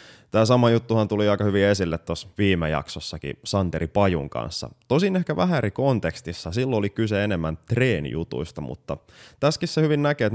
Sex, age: male, 20-39